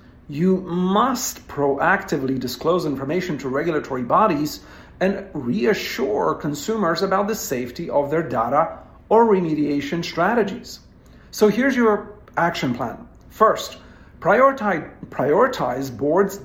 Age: 50-69